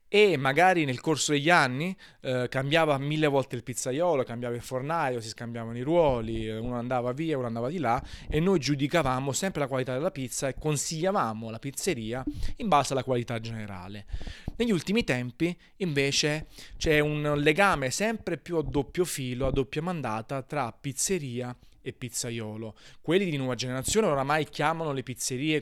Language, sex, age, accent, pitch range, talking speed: Italian, male, 30-49, native, 120-155 Hz, 165 wpm